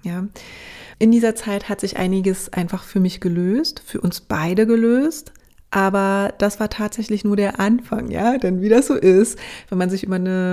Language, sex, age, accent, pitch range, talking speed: German, female, 30-49, German, 185-215 Hz, 180 wpm